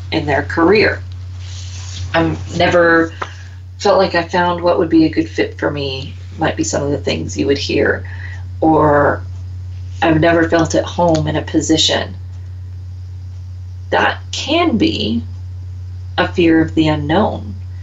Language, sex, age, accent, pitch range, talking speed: English, female, 40-59, American, 90-105 Hz, 150 wpm